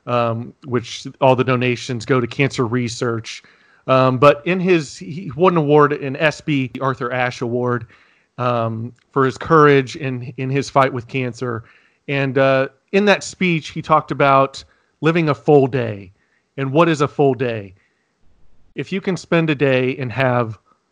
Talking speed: 165 wpm